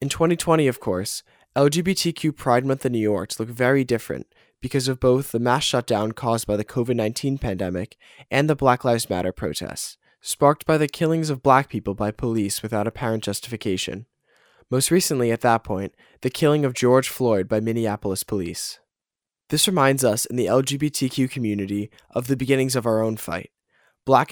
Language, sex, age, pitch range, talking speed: English, male, 10-29, 105-135 Hz, 175 wpm